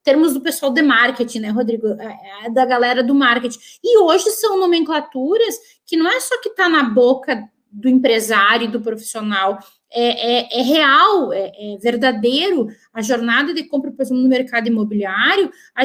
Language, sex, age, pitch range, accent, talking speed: Portuguese, female, 20-39, 245-335 Hz, Brazilian, 170 wpm